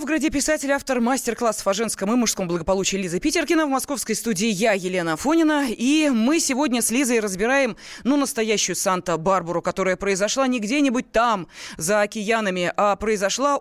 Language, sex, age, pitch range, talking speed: Russian, female, 20-39, 195-275 Hz, 160 wpm